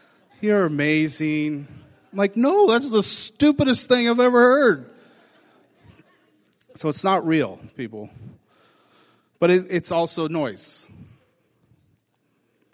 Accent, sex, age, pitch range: American, male, 40-59, 130-170 Hz